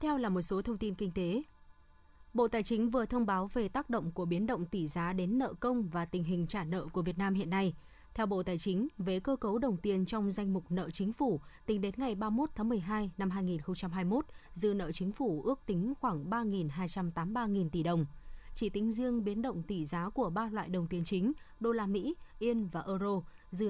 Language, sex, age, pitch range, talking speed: Vietnamese, female, 20-39, 175-225 Hz, 225 wpm